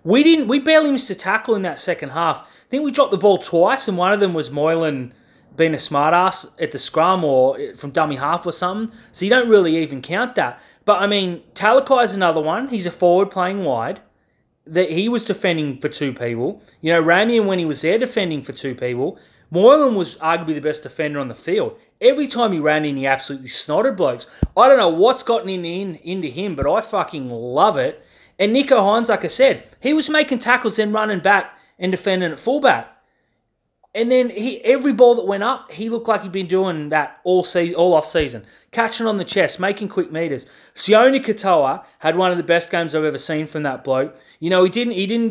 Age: 30-49